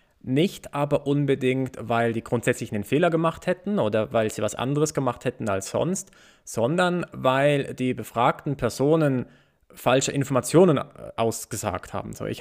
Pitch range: 120-150 Hz